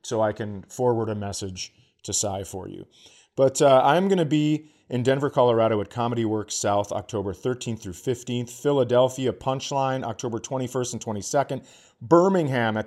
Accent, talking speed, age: American, 165 wpm, 40-59